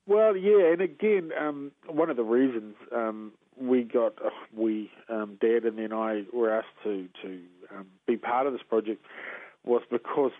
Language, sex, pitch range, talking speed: English, male, 110-145 Hz, 180 wpm